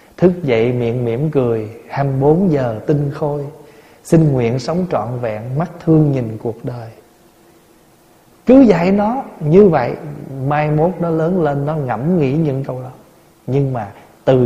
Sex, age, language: male, 20-39, Vietnamese